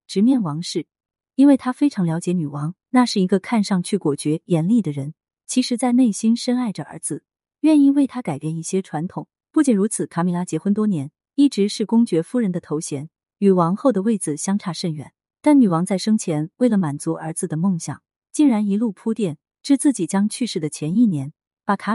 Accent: native